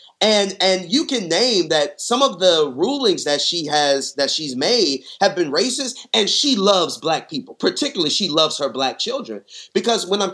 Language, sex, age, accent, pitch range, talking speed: English, male, 30-49, American, 155-230 Hz, 190 wpm